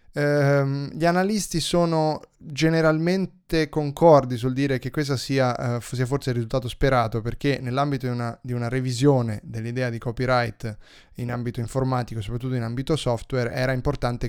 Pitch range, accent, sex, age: 115-135 Hz, native, male, 20-39